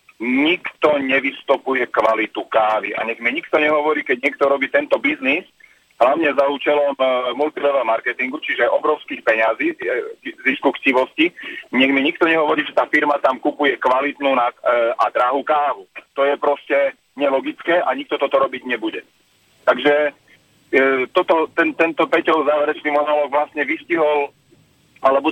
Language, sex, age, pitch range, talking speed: Slovak, male, 40-59, 130-160 Hz, 140 wpm